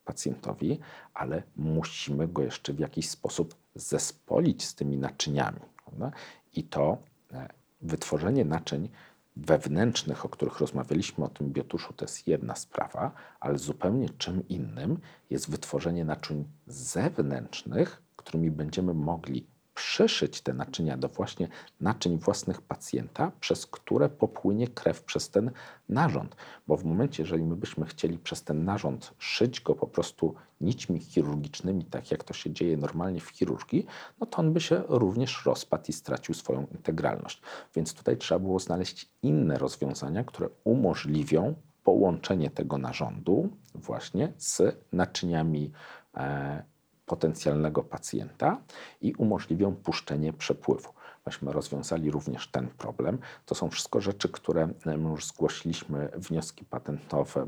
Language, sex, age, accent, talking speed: Polish, male, 50-69, native, 130 wpm